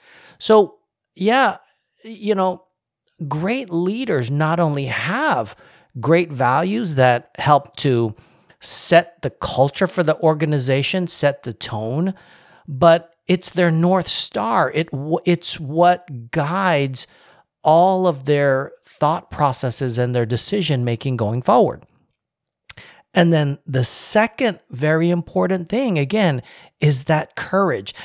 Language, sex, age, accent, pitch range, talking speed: English, male, 40-59, American, 130-185 Hz, 115 wpm